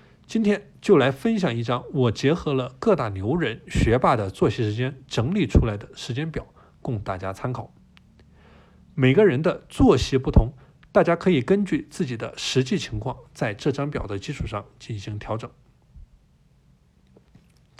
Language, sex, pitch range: Chinese, male, 120-170 Hz